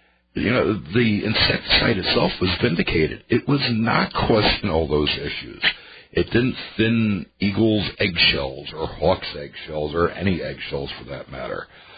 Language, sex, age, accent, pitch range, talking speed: English, male, 60-79, American, 85-110 Hz, 140 wpm